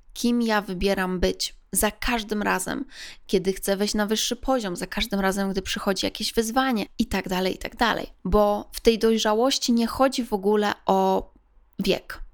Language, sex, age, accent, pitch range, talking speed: Polish, female, 20-39, native, 200-235 Hz, 175 wpm